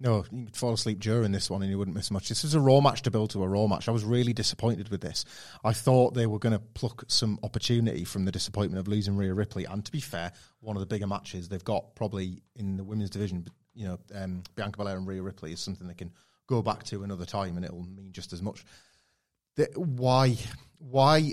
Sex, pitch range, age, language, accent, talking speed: male, 100-120 Hz, 30-49, English, British, 250 wpm